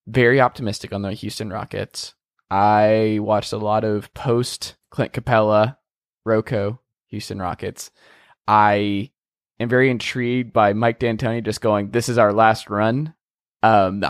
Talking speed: 135 wpm